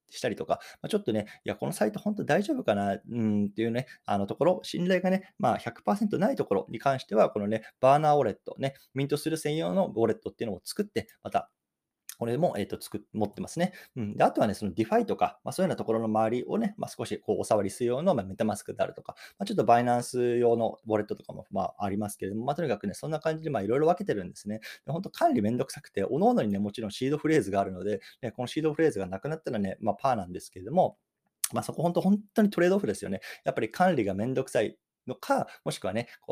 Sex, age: male, 20-39